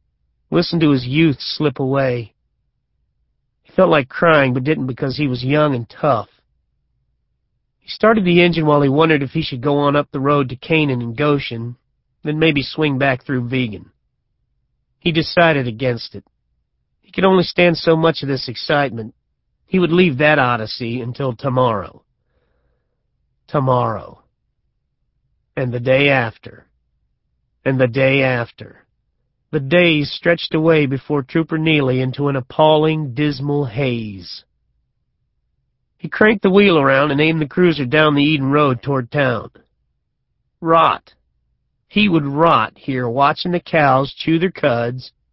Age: 40-59